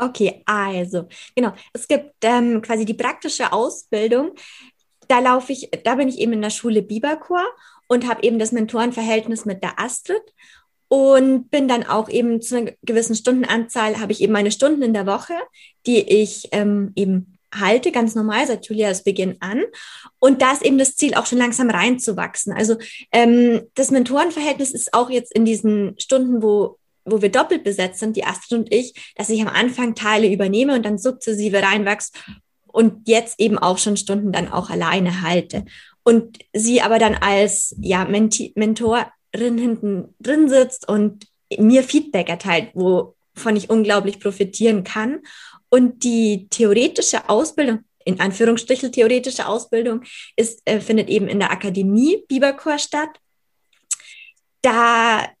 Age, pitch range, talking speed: 20-39, 210-255 Hz, 155 wpm